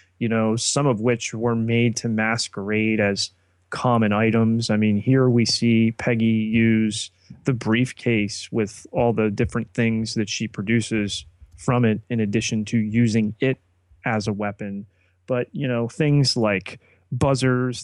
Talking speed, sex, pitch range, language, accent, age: 150 wpm, male, 105-125 Hz, English, American, 30-49